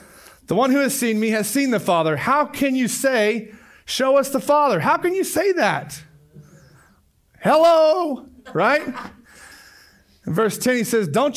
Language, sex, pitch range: English, male, 175-245 Hz